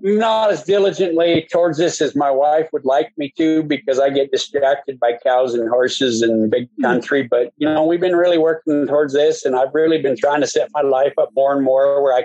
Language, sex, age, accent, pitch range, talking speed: English, male, 50-69, American, 130-180 Hz, 230 wpm